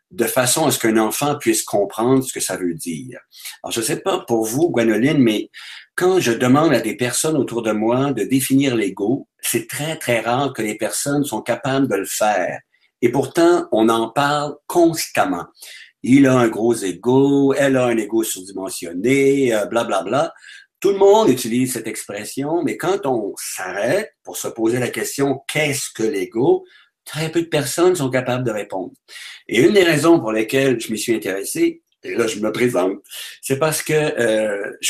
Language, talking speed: French, 195 wpm